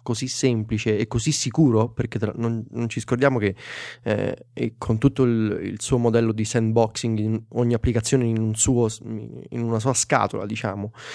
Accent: native